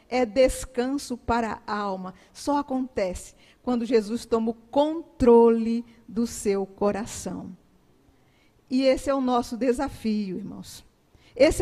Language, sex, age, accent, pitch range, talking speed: Portuguese, female, 50-69, Brazilian, 250-335 Hz, 120 wpm